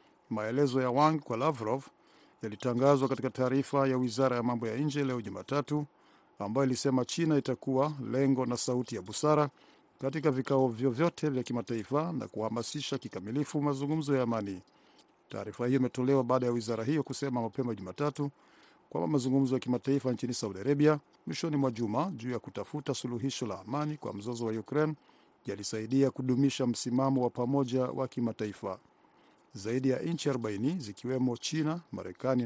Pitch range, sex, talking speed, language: 120-140 Hz, male, 150 wpm, Swahili